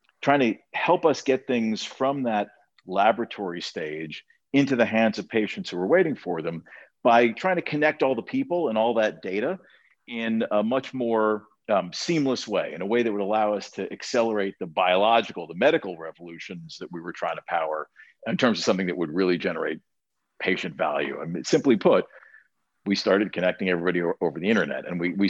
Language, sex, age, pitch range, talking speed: English, male, 50-69, 90-125 Hz, 190 wpm